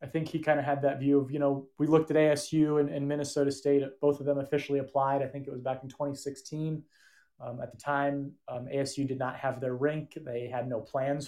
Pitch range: 130-145 Hz